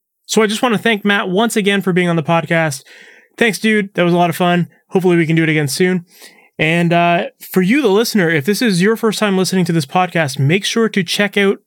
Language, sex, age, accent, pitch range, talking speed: English, male, 20-39, American, 160-205 Hz, 255 wpm